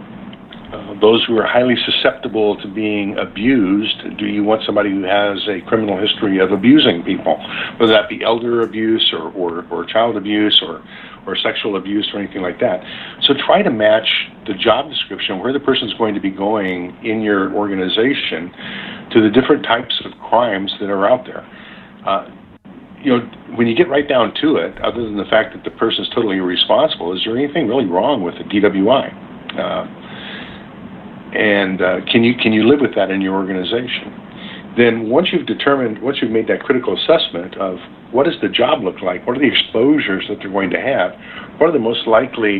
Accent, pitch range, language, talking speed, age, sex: American, 100-120 Hz, English, 195 wpm, 50-69, male